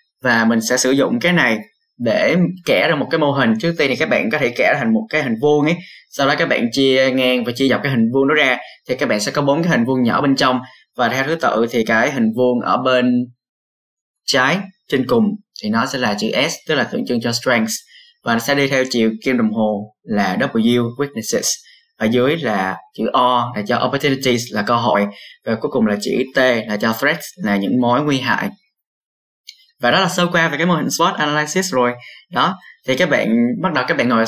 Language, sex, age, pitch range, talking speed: Vietnamese, male, 20-39, 120-175 Hz, 240 wpm